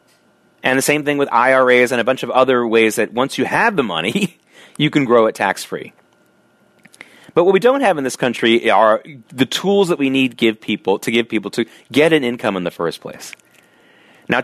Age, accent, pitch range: 30-49, American, 105-145 Hz